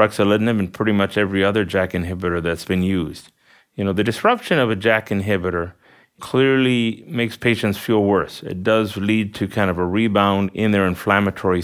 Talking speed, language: 175 wpm, English